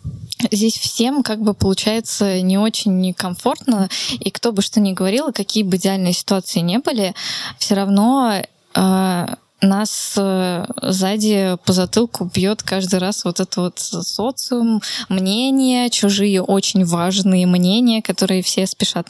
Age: 10-29